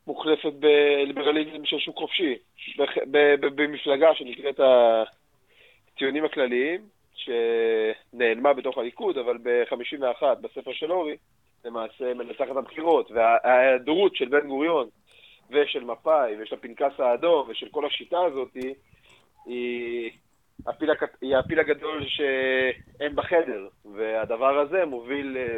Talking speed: 100 wpm